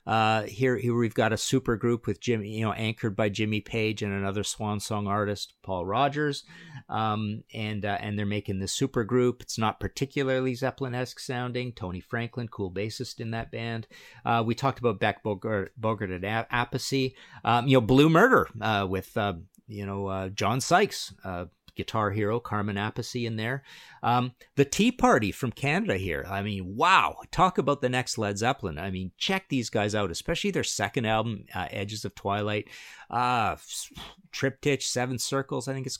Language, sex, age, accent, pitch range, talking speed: English, male, 50-69, American, 105-130 Hz, 185 wpm